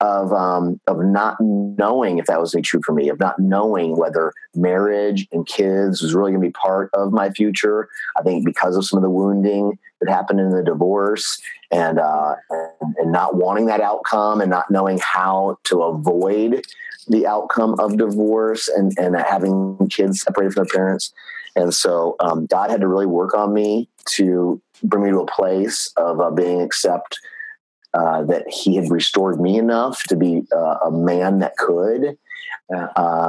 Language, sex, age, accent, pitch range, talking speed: English, male, 30-49, American, 90-105 Hz, 180 wpm